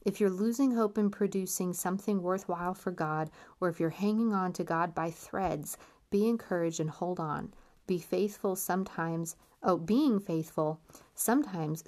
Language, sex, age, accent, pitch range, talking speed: English, female, 30-49, American, 165-215 Hz, 155 wpm